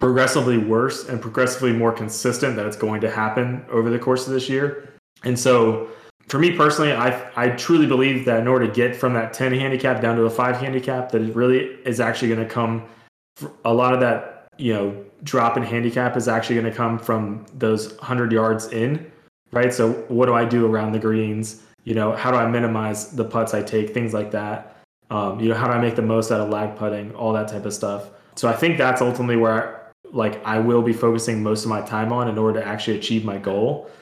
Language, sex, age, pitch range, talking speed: English, male, 20-39, 110-125 Hz, 230 wpm